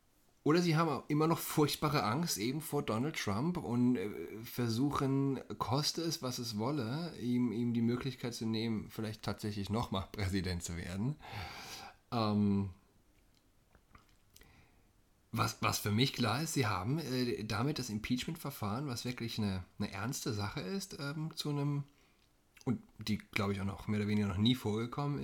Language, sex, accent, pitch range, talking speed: German, male, German, 105-135 Hz, 160 wpm